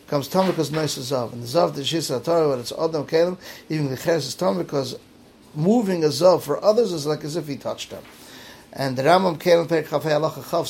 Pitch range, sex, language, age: 135-165 Hz, male, English, 50-69